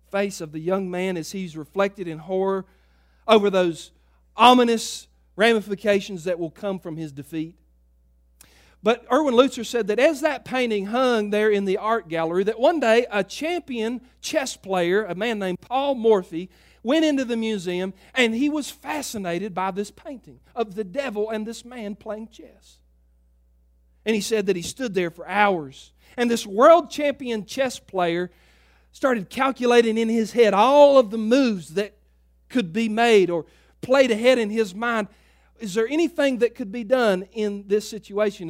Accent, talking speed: American, 170 wpm